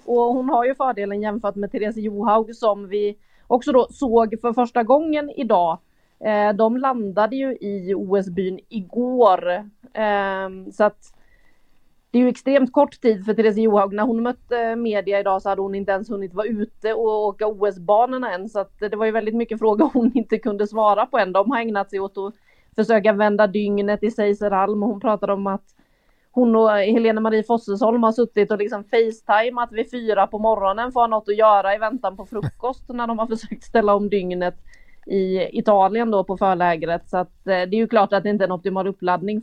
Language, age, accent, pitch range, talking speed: Swedish, 30-49, native, 195-230 Hz, 205 wpm